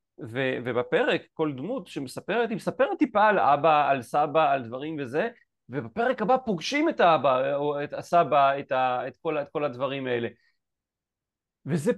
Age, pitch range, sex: 40-59, 145-205 Hz, male